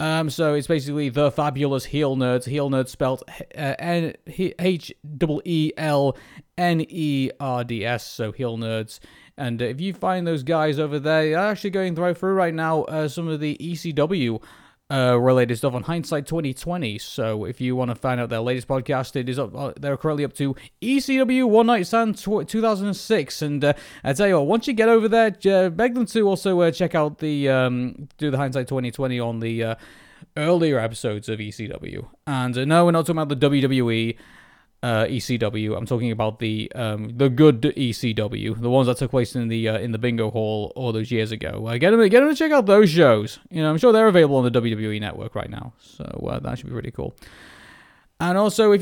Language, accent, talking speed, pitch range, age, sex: English, British, 215 wpm, 120-170 Hz, 30-49, male